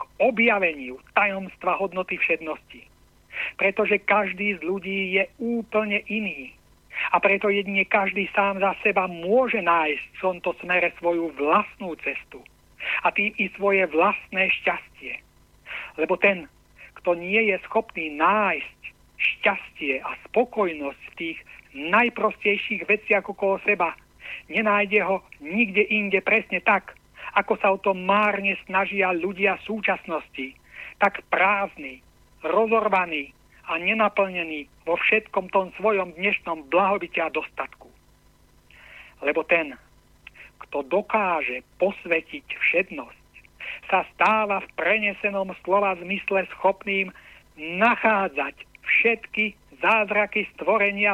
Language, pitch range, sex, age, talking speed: Slovak, 180-210 Hz, male, 60-79, 105 wpm